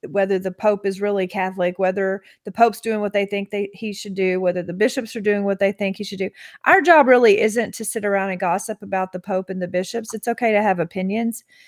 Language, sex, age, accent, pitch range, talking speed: English, female, 40-59, American, 190-225 Hz, 240 wpm